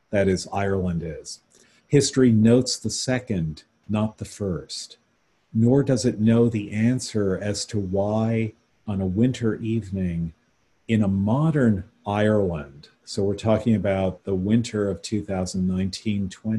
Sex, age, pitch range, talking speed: male, 40-59, 95-115 Hz, 130 wpm